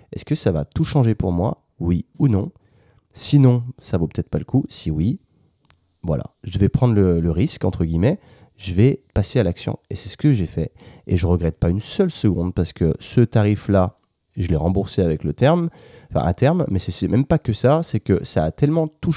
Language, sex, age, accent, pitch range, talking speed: French, male, 30-49, French, 90-120 Hz, 230 wpm